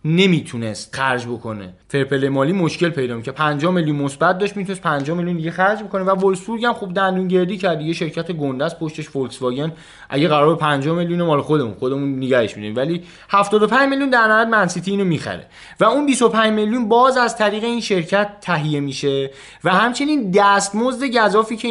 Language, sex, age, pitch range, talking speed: Persian, male, 20-39, 160-215 Hz, 170 wpm